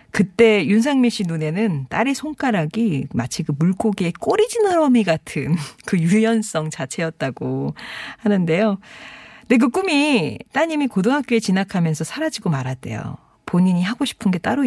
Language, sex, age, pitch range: Korean, female, 40-59, 160-220 Hz